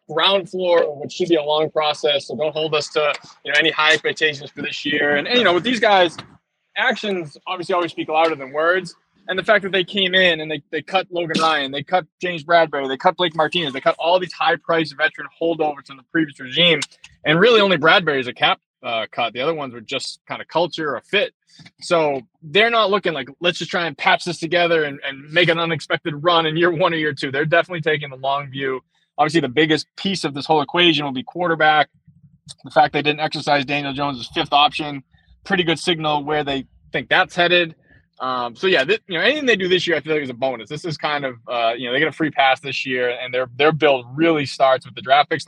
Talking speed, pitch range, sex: 245 wpm, 140-170 Hz, male